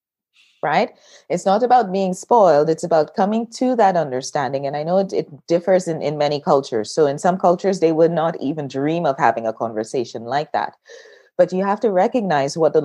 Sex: female